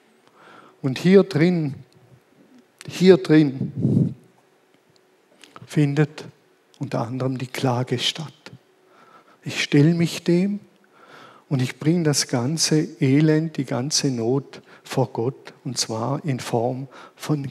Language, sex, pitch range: German, male, 135-170 Hz